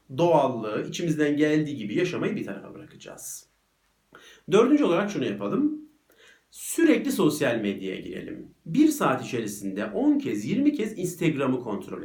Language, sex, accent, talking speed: Turkish, male, native, 125 wpm